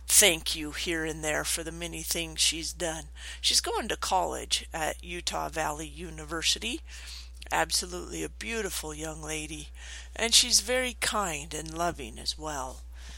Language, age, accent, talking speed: English, 50-69, American, 145 wpm